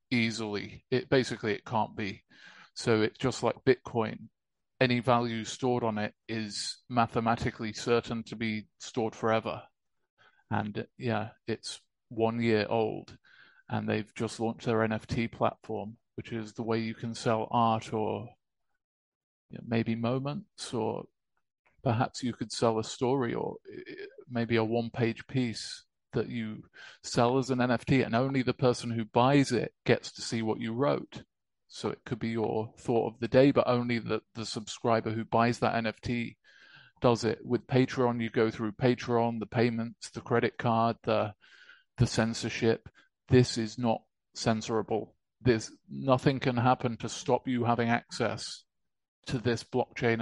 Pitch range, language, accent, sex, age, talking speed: 110-125 Hz, English, British, male, 30-49, 155 wpm